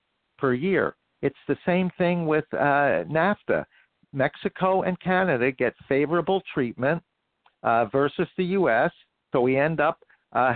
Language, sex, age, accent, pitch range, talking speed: English, male, 60-79, American, 140-190 Hz, 135 wpm